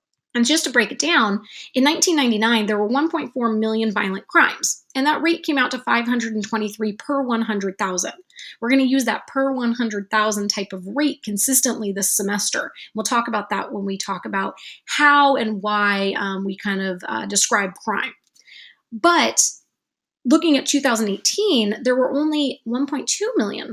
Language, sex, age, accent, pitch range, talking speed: English, female, 30-49, American, 205-275 Hz, 160 wpm